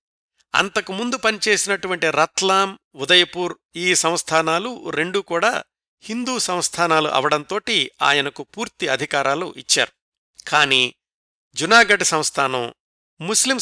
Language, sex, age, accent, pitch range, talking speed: Telugu, male, 50-69, native, 145-180 Hz, 85 wpm